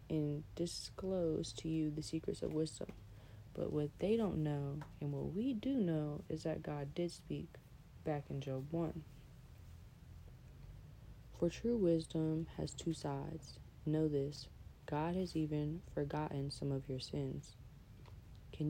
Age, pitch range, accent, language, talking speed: 30-49, 130-160 Hz, American, English, 140 wpm